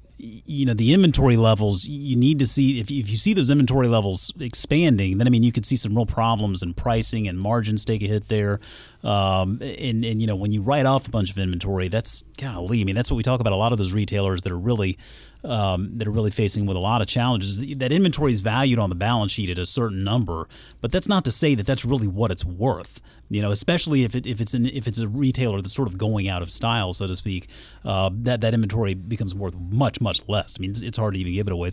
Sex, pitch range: male, 100-125 Hz